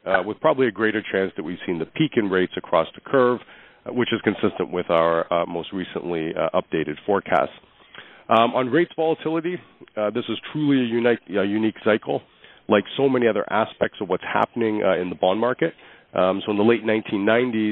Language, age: English, 40-59